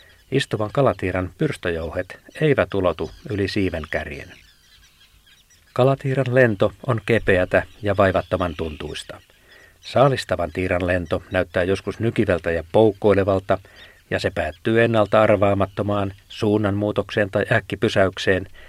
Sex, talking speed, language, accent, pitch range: male, 100 wpm, Finnish, native, 90-110 Hz